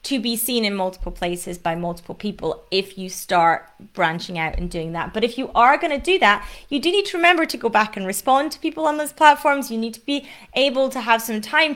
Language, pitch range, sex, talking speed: English, 185-240 Hz, female, 245 wpm